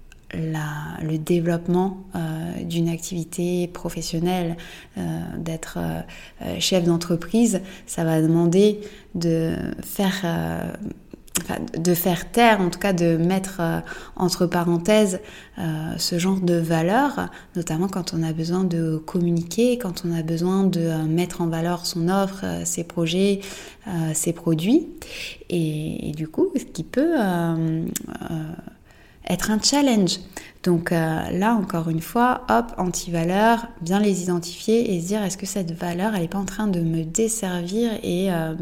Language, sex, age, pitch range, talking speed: French, female, 20-39, 170-200 Hz, 155 wpm